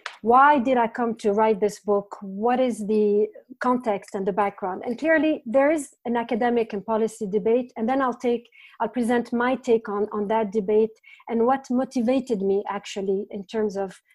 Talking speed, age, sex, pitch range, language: 185 wpm, 40-59, female, 215-270 Hz, English